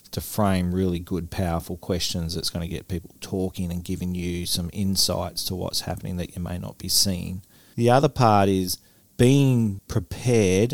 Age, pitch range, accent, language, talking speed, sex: 40-59, 90-105 Hz, Australian, English, 180 wpm, male